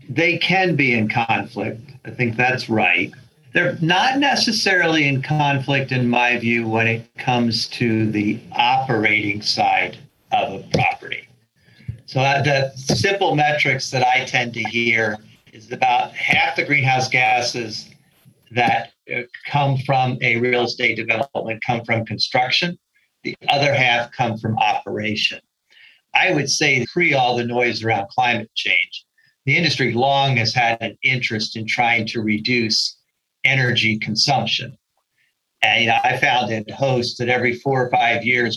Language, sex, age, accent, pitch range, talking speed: English, male, 50-69, American, 115-135 Hz, 145 wpm